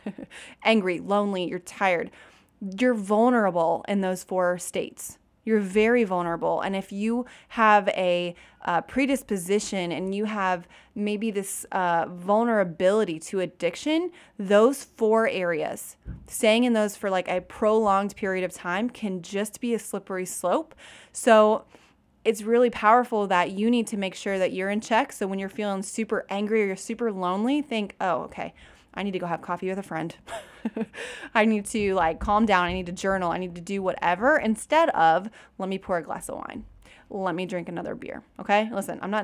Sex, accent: female, American